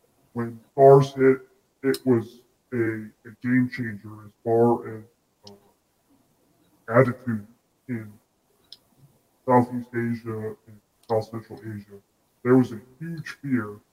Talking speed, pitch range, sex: 110 wpm, 115-130 Hz, female